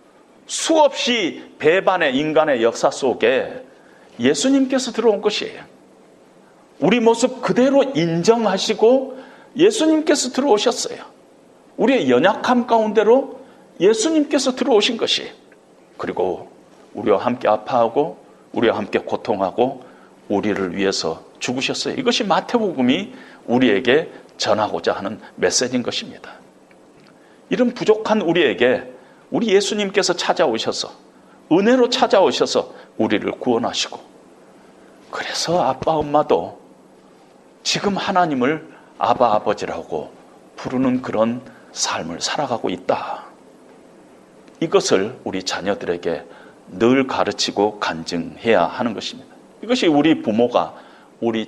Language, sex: Korean, male